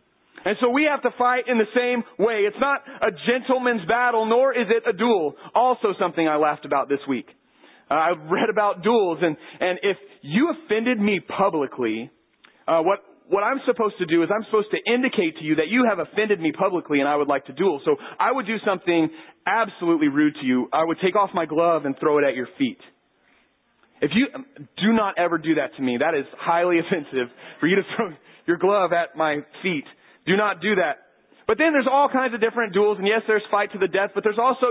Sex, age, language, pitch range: male, 30-49, English, 180-255 Hz